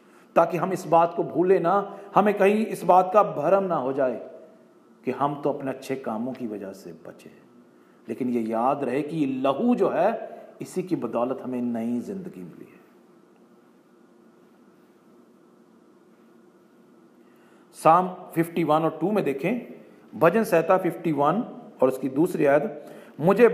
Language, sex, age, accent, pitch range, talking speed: Hindi, male, 40-59, native, 150-195 Hz, 145 wpm